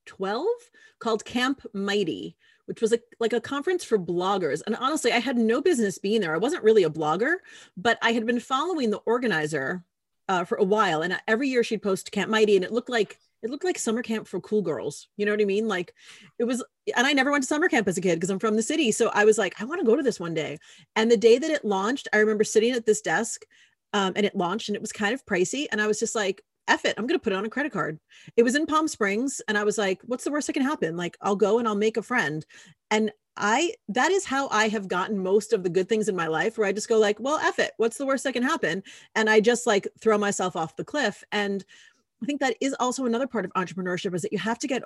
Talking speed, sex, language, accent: 275 wpm, female, English, American